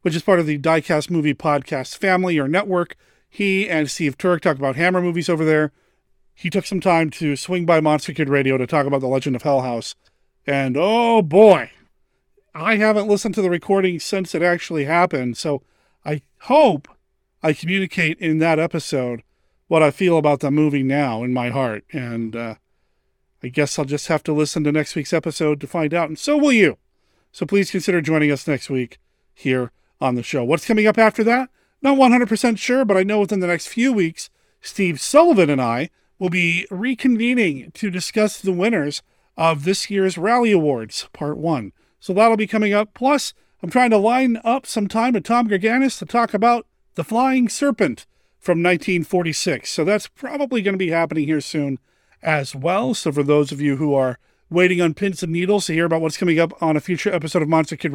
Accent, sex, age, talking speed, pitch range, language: American, male, 40-59, 200 wpm, 150-205 Hz, English